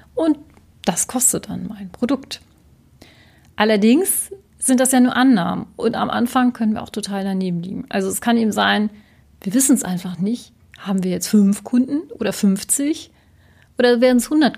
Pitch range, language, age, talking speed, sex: 200-240 Hz, German, 40-59, 175 wpm, female